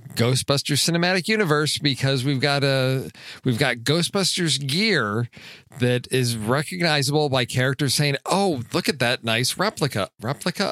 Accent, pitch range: American, 115-150 Hz